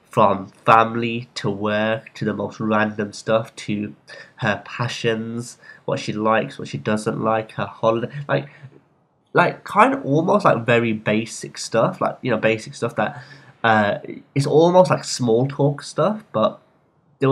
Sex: male